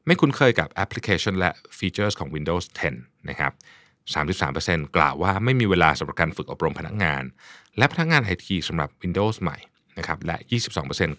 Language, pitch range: Thai, 85-115 Hz